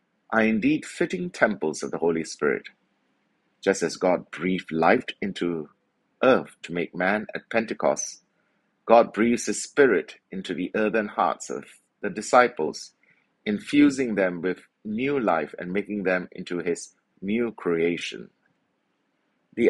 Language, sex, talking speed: English, male, 135 wpm